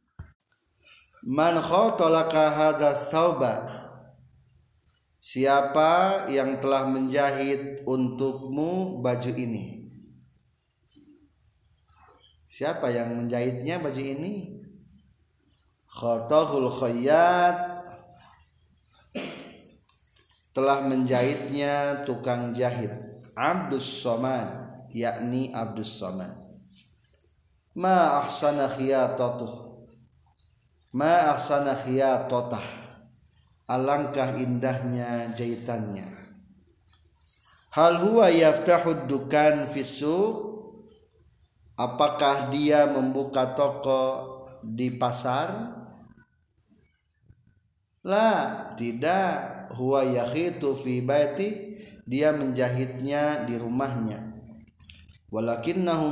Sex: male